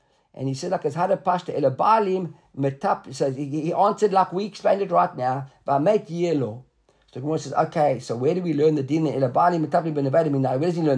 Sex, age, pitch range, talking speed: male, 50-69, 150-190 Hz, 220 wpm